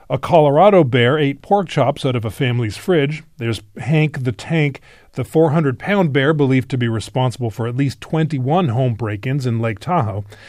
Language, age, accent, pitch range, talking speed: English, 30-49, American, 125-170 Hz, 175 wpm